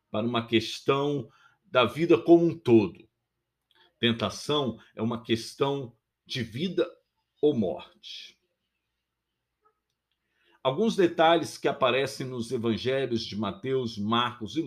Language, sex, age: Portuguese, male, 50-69